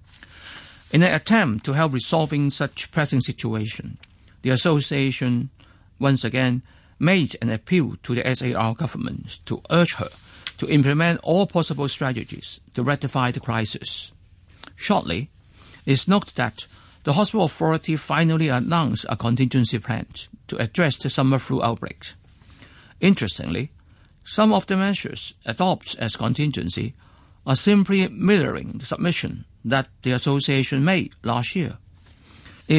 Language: English